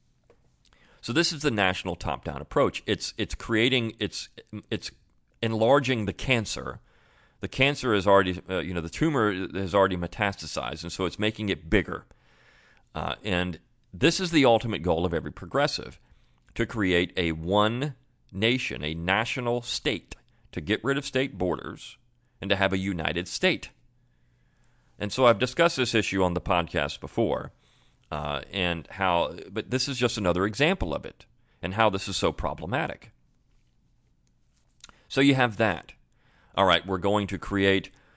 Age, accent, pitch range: 40-59, American, 90-115 Hz